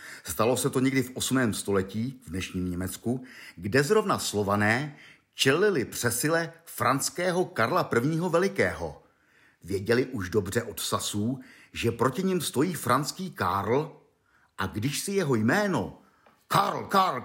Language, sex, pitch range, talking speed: Czech, male, 105-165 Hz, 130 wpm